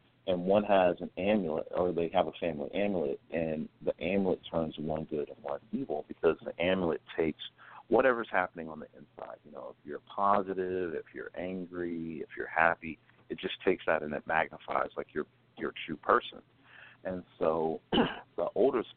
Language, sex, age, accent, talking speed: English, male, 40-59, American, 180 wpm